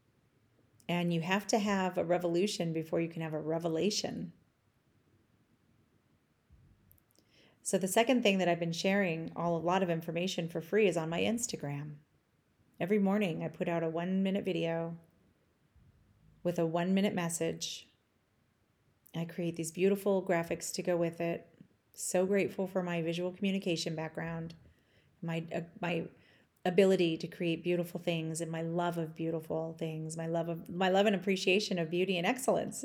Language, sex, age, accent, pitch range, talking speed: English, female, 30-49, American, 165-190 Hz, 160 wpm